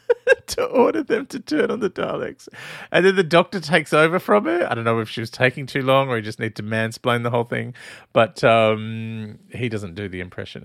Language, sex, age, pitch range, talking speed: English, male, 30-49, 105-125 Hz, 230 wpm